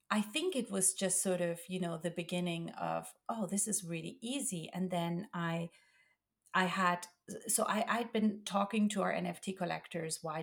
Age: 30-49